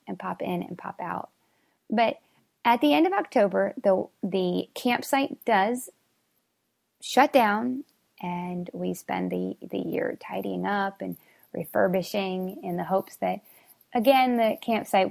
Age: 20-39